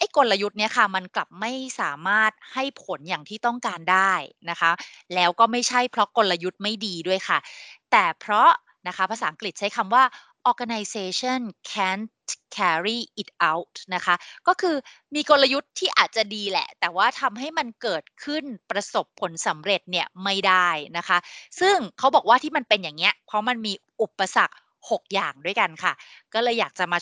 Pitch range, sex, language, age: 185-250 Hz, female, Thai, 20-39